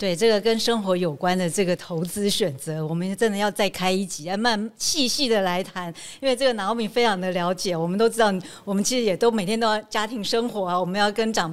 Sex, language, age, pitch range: female, Chinese, 50-69, 185-235 Hz